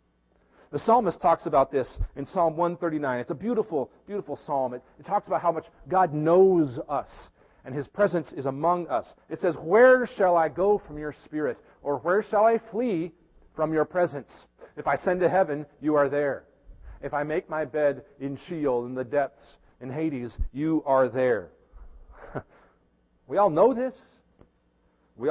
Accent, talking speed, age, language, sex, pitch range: American, 175 wpm, 40-59, English, male, 135-200 Hz